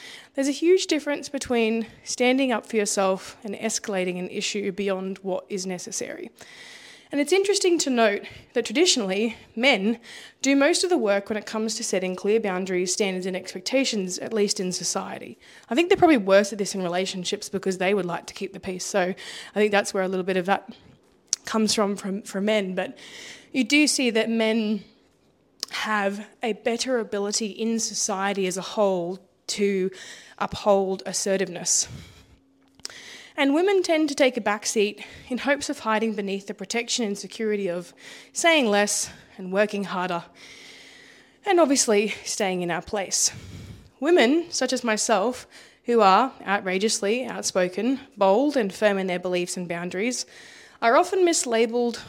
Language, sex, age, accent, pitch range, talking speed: English, female, 20-39, Australian, 195-250 Hz, 165 wpm